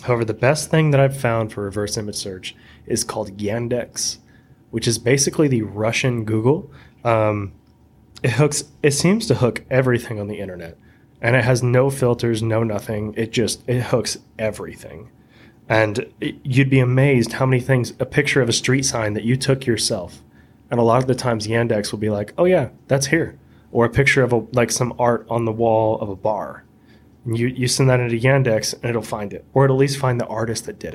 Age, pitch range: 20-39, 110-130 Hz